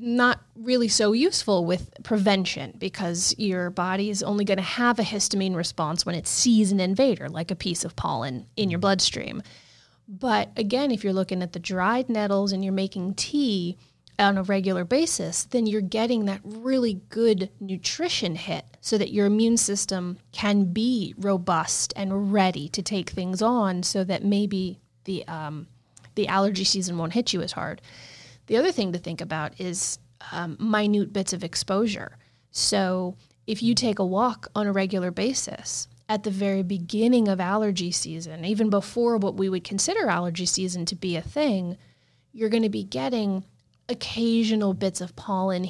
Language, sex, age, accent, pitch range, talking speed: English, female, 30-49, American, 180-215 Hz, 175 wpm